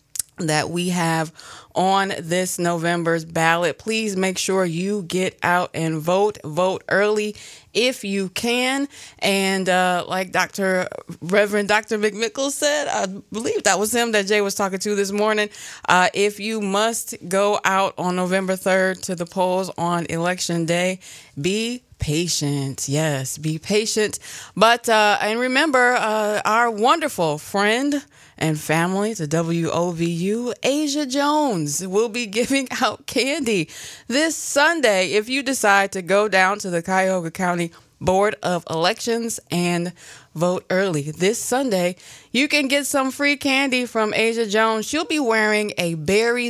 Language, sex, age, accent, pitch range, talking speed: English, female, 20-39, American, 175-225 Hz, 145 wpm